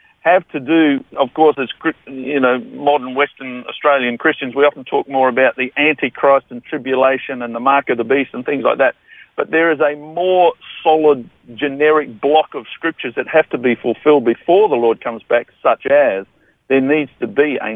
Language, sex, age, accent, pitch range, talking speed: English, male, 50-69, Australian, 125-150 Hz, 195 wpm